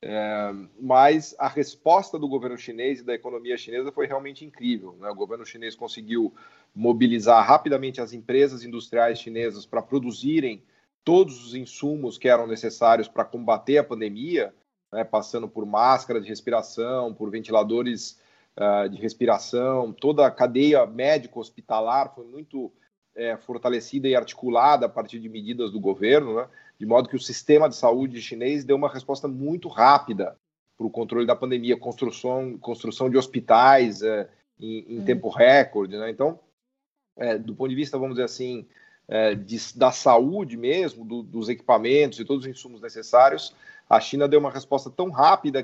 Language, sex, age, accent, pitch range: Chinese, male, 40-59, Brazilian, 115-145 Hz